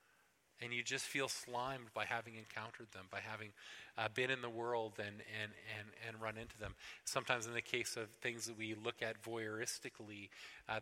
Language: English